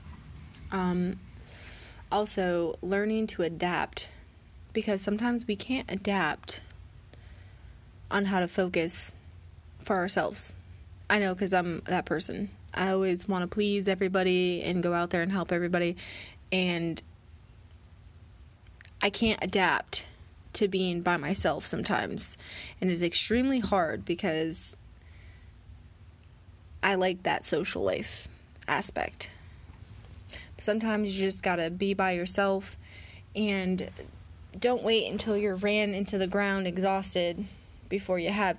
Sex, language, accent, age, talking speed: female, English, American, 20-39, 120 wpm